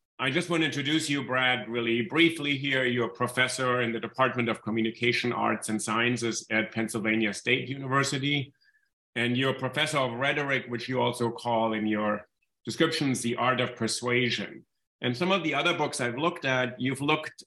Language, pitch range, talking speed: English, 110-135 Hz, 180 wpm